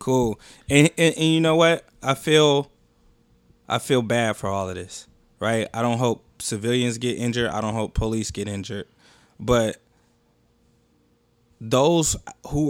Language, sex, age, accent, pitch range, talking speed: English, male, 20-39, American, 110-145 Hz, 150 wpm